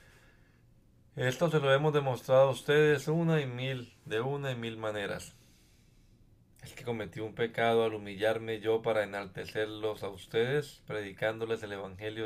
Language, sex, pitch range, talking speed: Spanish, male, 110-135 Hz, 145 wpm